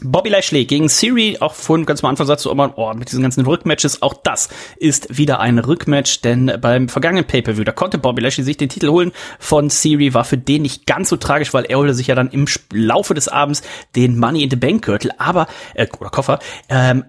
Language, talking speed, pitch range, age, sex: German, 220 wpm, 130-170 Hz, 30-49, male